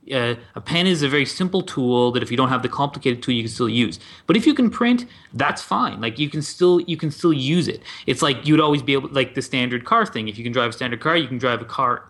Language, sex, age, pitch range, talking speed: English, male, 30-49, 125-165 Hz, 300 wpm